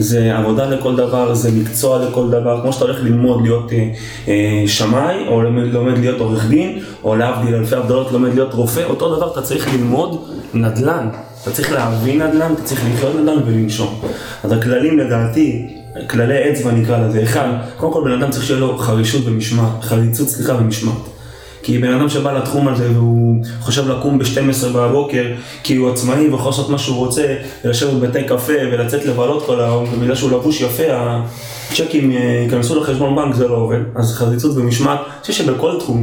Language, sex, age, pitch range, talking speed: Hebrew, male, 20-39, 115-135 Hz, 175 wpm